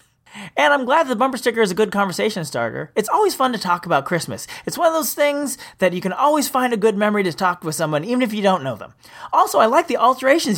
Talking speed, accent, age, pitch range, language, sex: 260 wpm, American, 30-49, 175-255 Hz, English, male